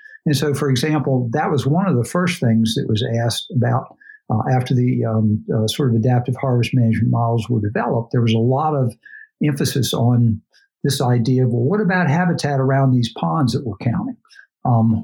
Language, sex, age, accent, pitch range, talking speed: English, male, 60-79, American, 115-140 Hz, 195 wpm